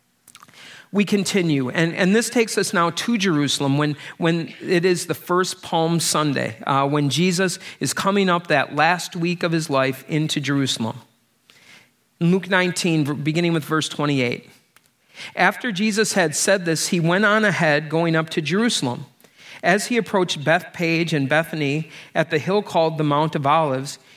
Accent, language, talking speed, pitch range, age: American, English, 160 wpm, 145-185 Hz, 40-59